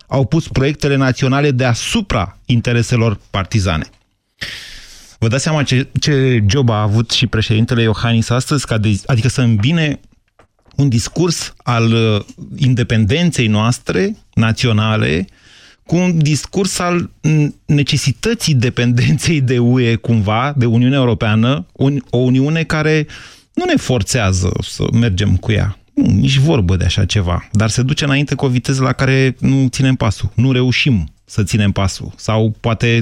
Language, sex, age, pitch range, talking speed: Romanian, male, 30-49, 105-135 Hz, 135 wpm